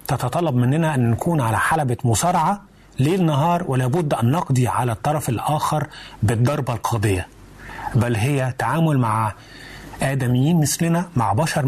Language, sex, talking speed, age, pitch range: Arabic, male, 130 wpm, 30-49, 120-155 Hz